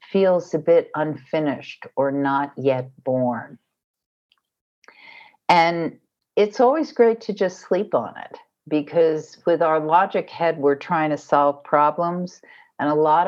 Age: 60-79